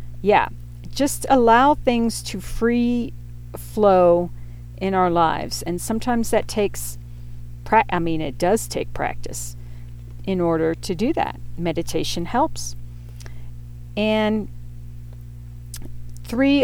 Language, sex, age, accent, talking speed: English, female, 40-59, American, 105 wpm